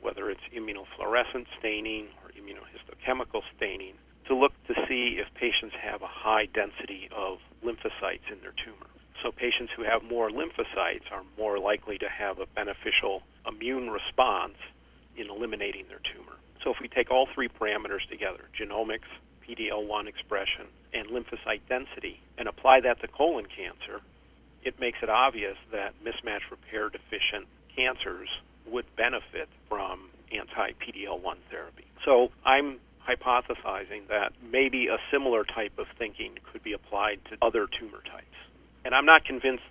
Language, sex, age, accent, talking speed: English, male, 50-69, American, 150 wpm